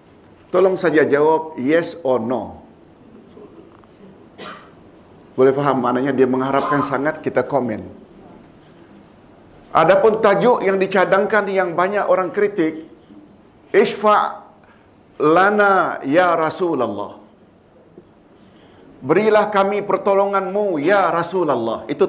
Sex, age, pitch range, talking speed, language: male, 50-69, 155-205 Hz, 85 wpm, Malayalam